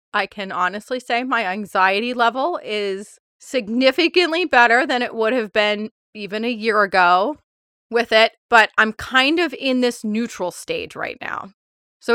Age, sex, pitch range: 30-49, female, 215-260 Hz